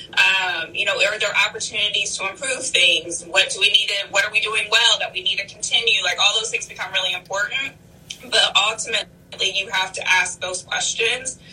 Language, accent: English, American